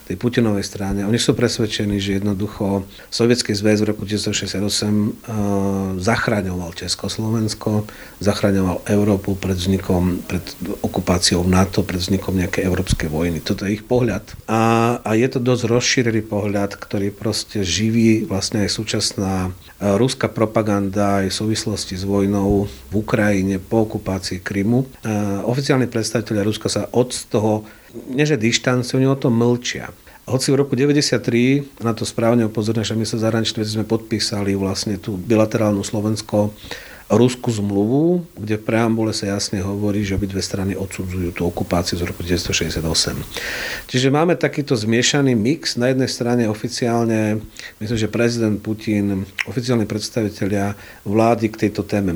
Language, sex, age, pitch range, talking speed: Slovak, male, 40-59, 100-115 Hz, 145 wpm